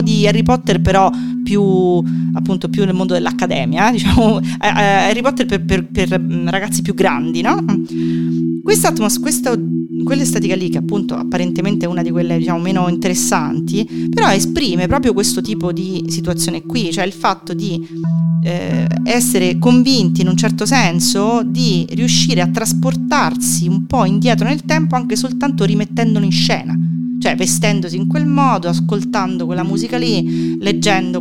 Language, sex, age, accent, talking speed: Italian, female, 40-59, native, 150 wpm